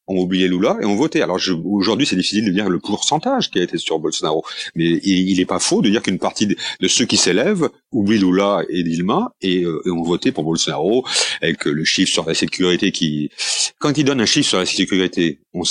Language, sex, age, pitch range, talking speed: French, male, 40-59, 85-115 Hz, 240 wpm